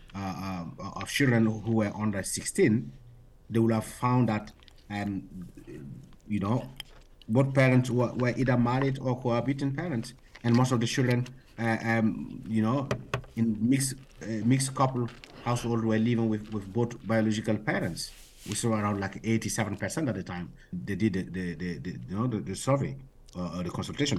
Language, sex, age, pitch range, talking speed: English, male, 50-69, 105-130 Hz, 180 wpm